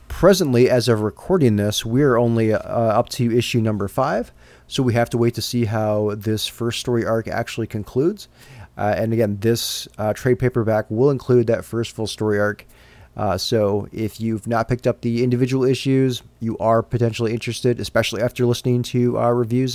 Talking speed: 185 wpm